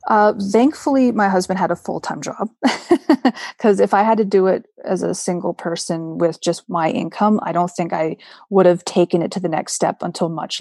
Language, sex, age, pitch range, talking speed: English, female, 30-49, 170-200 Hz, 210 wpm